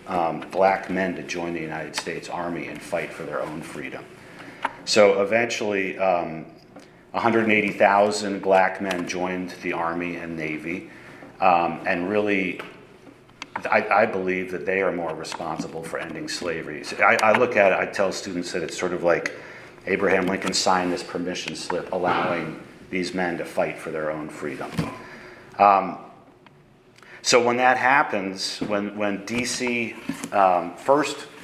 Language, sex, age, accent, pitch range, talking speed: English, male, 40-59, American, 85-105 Hz, 145 wpm